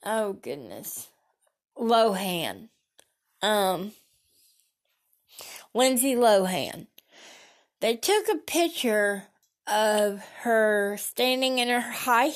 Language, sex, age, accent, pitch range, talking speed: English, female, 20-39, American, 205-260 Hz, 80 wpm